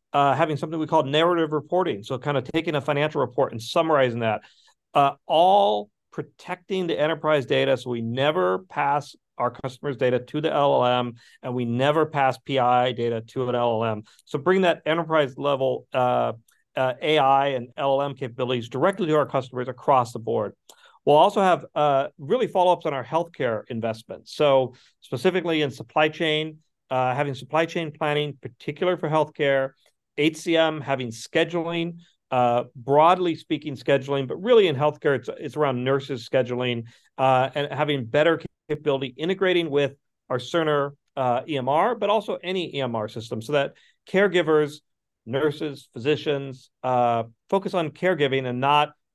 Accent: American